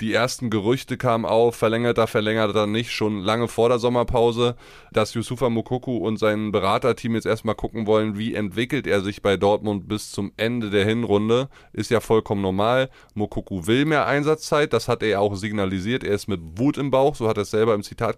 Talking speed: 210 wpm